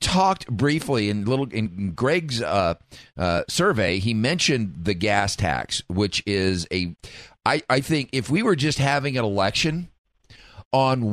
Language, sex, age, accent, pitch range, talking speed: English, male, 40-59, American, 105-140 Hz, 150 wpm